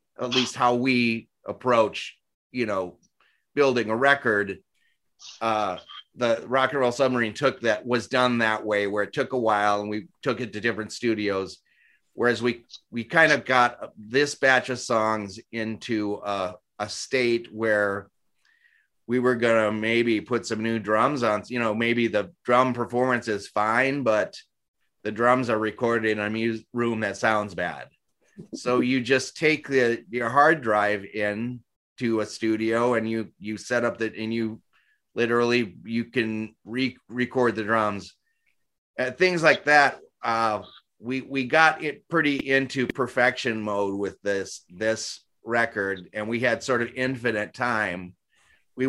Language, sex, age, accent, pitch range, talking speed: English, male, 30-49, American, 105-125 Hz, 160 wpm